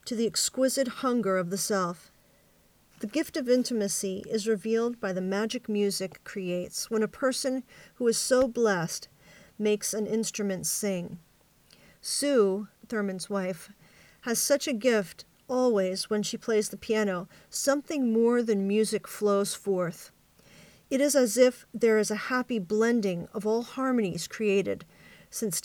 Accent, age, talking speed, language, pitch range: American, 40-59, 145 wpm, English, 200-245 Hz